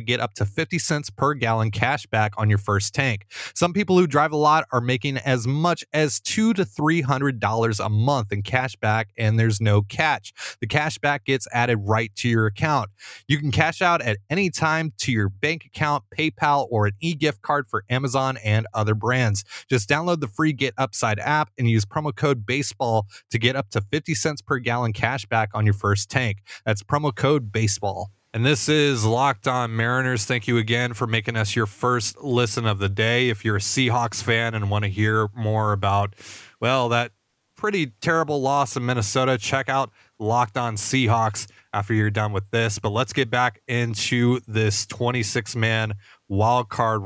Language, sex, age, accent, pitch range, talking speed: English, male, 30-49, American, 110-135 Hz, 195 wpm